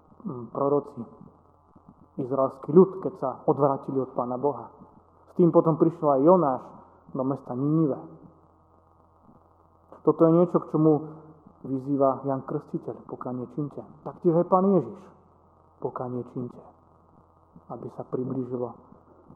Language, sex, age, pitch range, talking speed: Slovak, male, 30-49, 110-155 Hz, 120 wpm